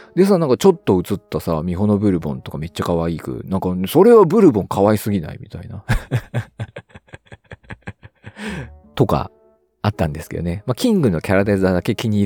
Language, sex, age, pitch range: Japanese, male, 40-59, 85-125 Hz